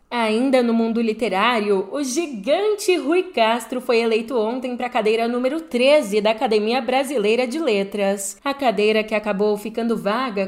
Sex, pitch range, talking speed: female, 210-275 Hz, 155 wpm